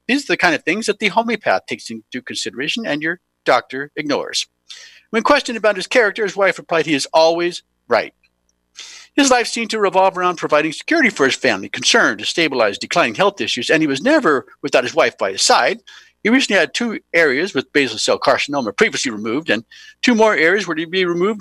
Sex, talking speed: male, 205 wpm